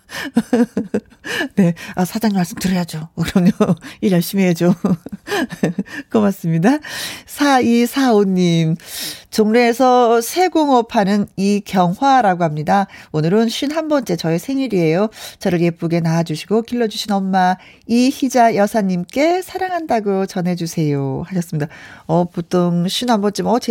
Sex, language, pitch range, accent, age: female, Korean, 180-245 Hz, native, 40-59